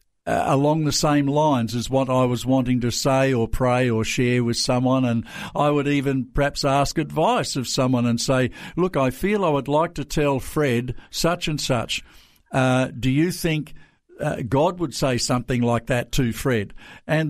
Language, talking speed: English, 190 wpm